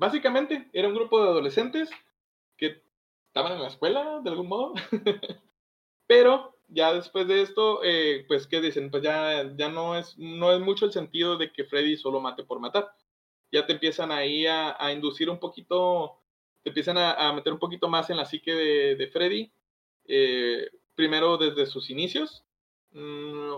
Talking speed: 175 wpm